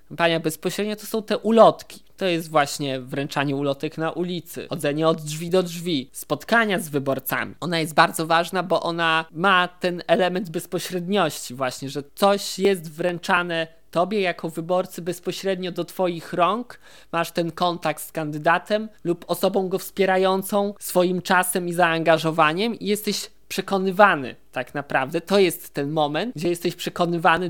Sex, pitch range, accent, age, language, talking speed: male, 155-185 Hz, native, 20-39, Polish, 150 wpm